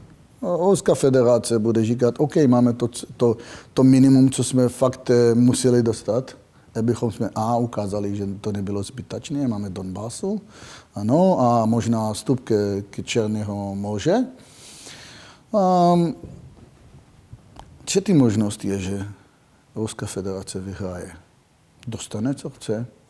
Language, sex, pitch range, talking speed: Czech, male, 100-125 Hz, 110 wpm